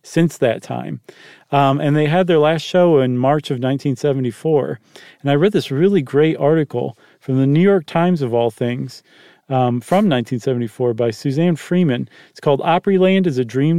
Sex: male